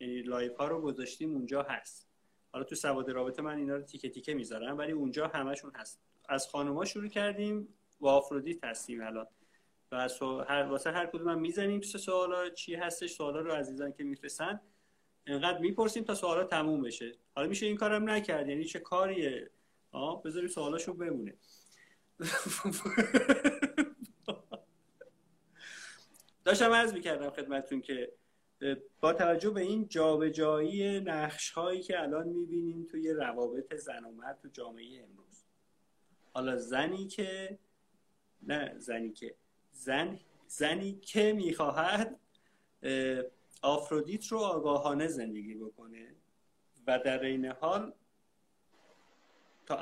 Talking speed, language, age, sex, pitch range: 125 wpm, Persian, 30-49, male, 135-185 Hz